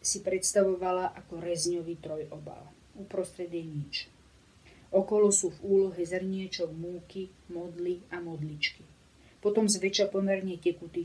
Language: Slovak